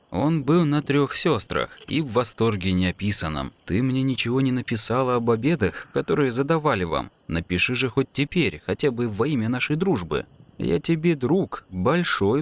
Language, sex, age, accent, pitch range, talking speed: Russian, male, 20-39, native, 95-140 Hz, 160 wpm